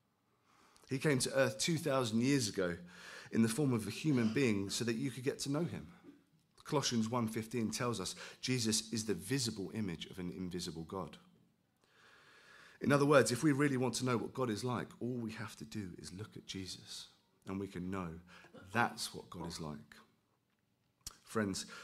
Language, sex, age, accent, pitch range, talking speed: English, male, 40-59, British, 95-135 Hz, 185 wpm